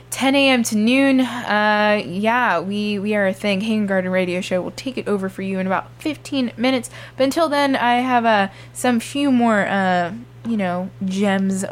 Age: 20-39